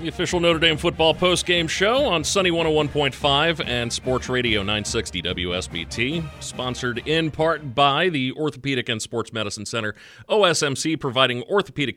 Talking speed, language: 140 wpm, English